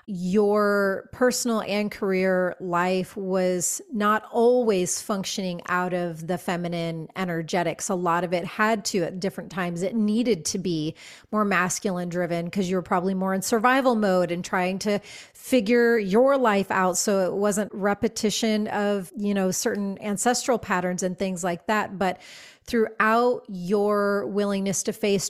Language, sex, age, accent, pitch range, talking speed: English, female, 30-49, American, 185-210 Hz, 155 wpm